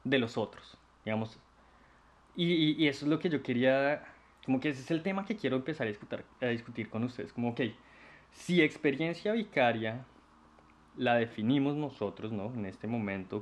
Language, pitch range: Spanish, 115-160 Hz